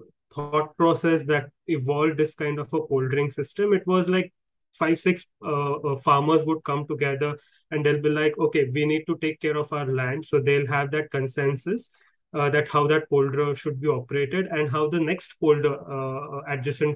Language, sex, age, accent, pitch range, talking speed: English, male, 20-39, Indian, 140-160 Hz, 190 wpm